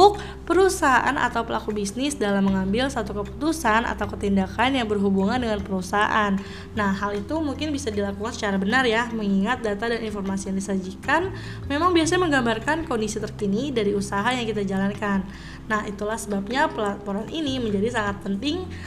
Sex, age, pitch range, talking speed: female, 20-39, 200-270 Hz, 150 wpm